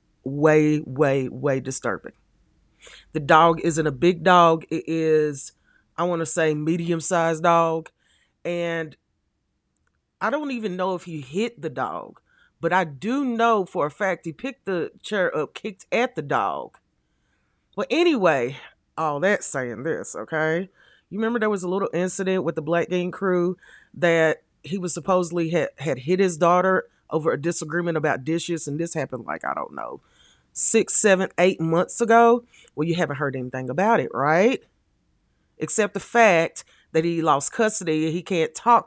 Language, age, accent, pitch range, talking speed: English, 30-49, American, 150-185 Hz, 165 wpm